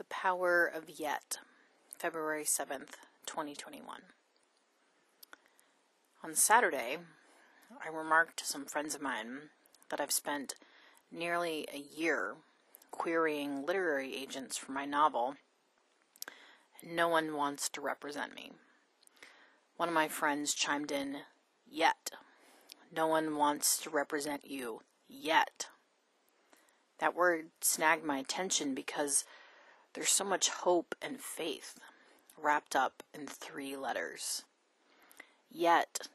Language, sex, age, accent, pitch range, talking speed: English, female, 30-49, American, 145-165 Hz, 110 wpm